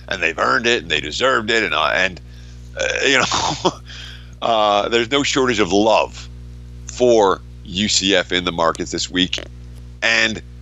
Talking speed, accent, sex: 160 wpm, American, male